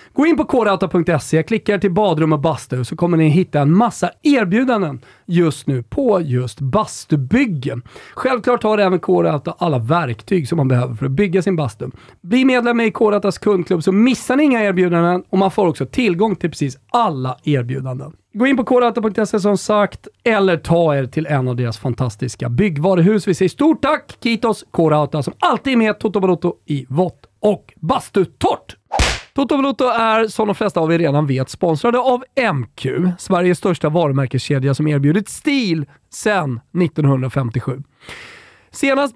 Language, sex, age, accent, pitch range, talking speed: Swedish, male, 40-59, native, 140-210 Hz, 165 wpm